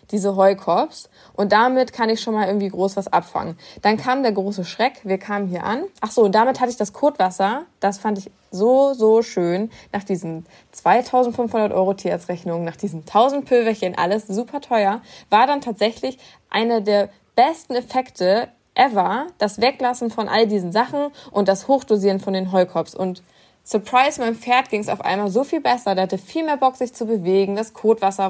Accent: German